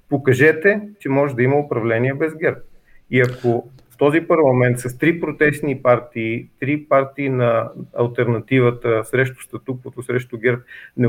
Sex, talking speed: male, 145 wpm